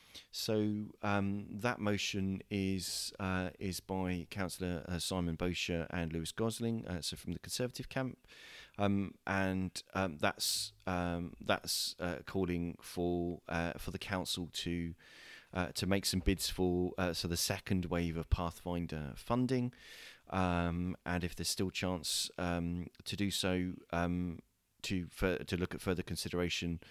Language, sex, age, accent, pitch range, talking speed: English, male, 30-49, British, 85-95 Hz, 145 wpm